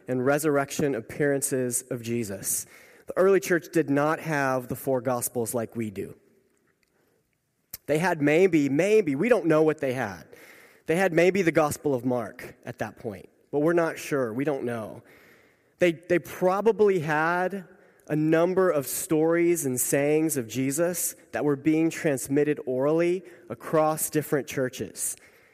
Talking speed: 150 wpm